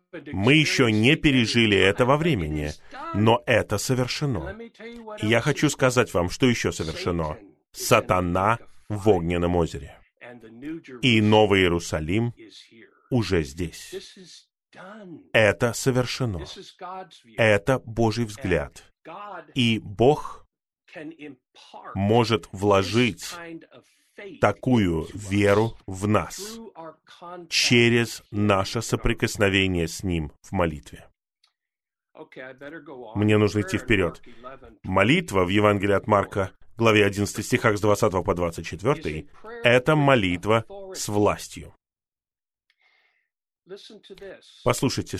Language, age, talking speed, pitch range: Russian, 30-49, 90 wpm, 100-140 Hz